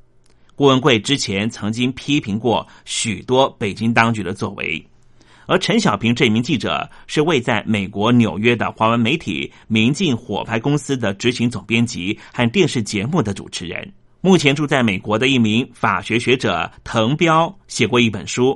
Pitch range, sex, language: 110-140 Hz, male, Chinese